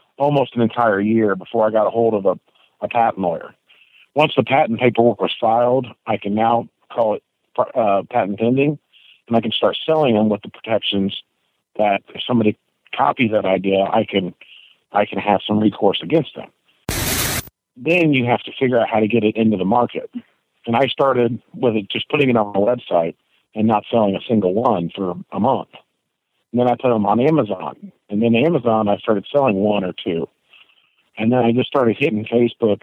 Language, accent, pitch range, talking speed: English, American, 105-130 Hz, 195 wpm